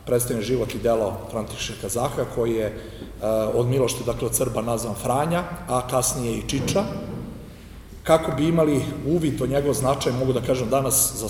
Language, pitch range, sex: Czech, 110-130 Hz, male